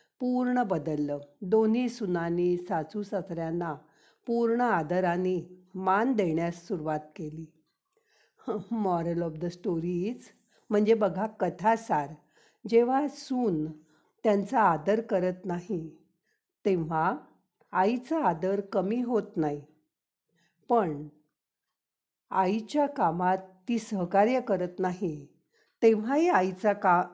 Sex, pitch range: female, 175-225 Hz